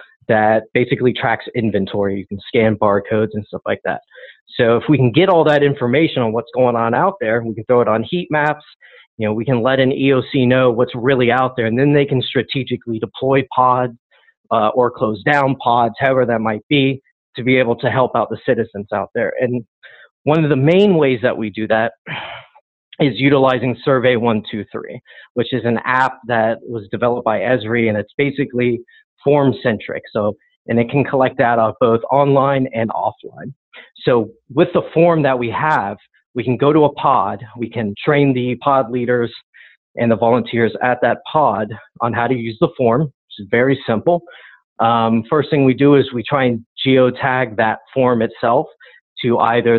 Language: English